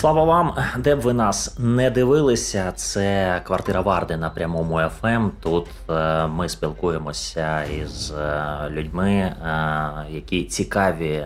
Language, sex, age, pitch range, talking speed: Ukrainian, male, 20-39, 80-100 Hz, 110 wpm